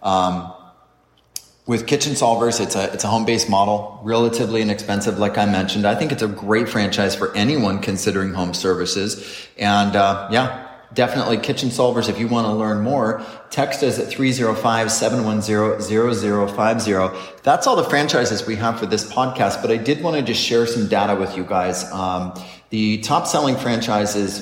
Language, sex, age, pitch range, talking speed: English, male, 30-49, 100-120 Hz, 190 wpm